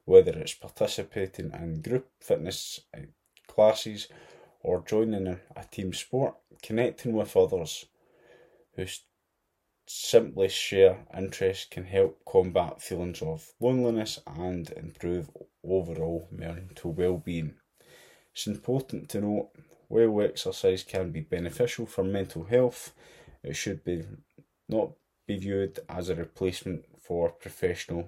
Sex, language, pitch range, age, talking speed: male, English, 85-115 Hz, 20-39, 115 wpm